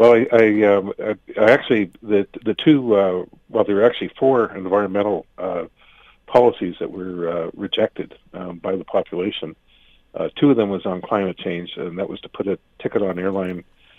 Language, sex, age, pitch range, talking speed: English, male, 50-69, 90-110 Hz, 185 wpm